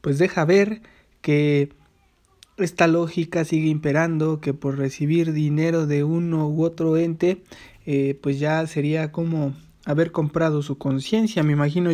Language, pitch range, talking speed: English, 145-170 Hz, 140 wpm